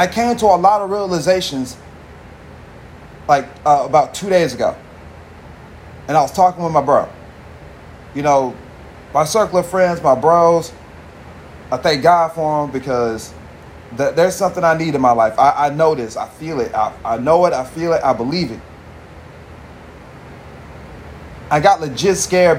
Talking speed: 165 wpm